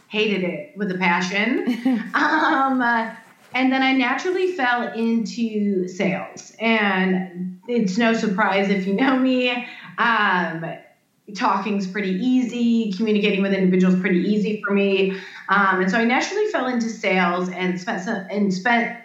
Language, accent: English, American